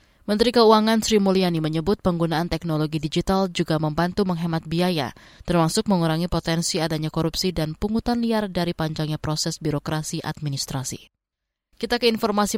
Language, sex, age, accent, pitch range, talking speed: Indonesian, female, 20-39, native, 160-205 Hz, 135 wpm